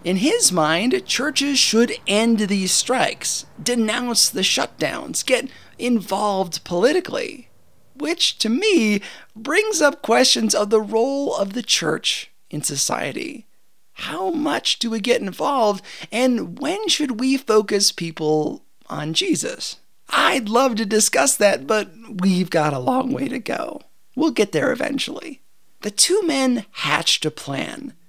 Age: 30-49